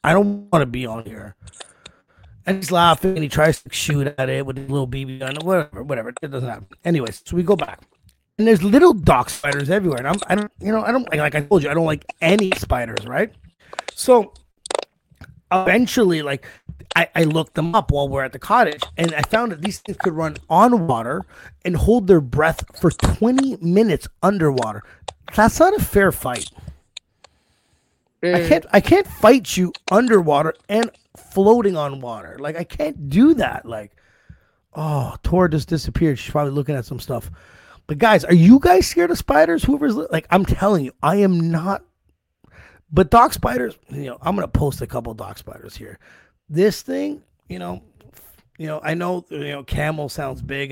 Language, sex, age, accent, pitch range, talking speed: English, male, 30-49, American, 130-195 Hz, 195 wpm